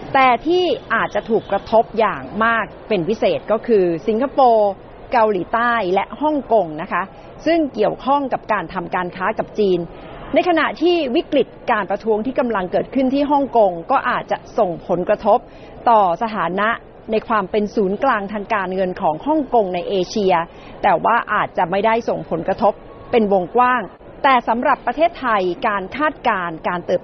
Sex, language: female, Thai